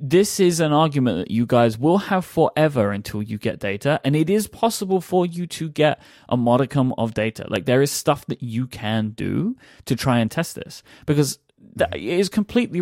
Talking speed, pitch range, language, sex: 200 wpm, 115-160 Hz, English, male